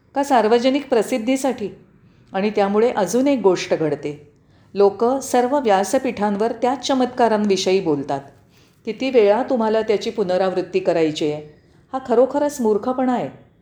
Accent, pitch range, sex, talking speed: native, 190-255 Hz, female, 115 wpm